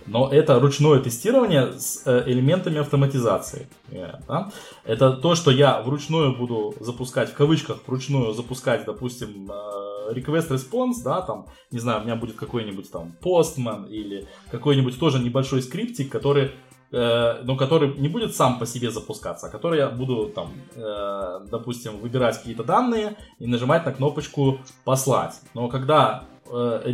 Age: 20-39